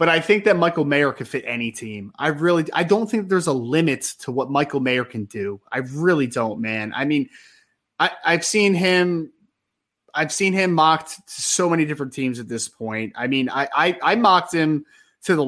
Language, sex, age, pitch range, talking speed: English, male, 20-39, 130-185 Hz, 215 wpm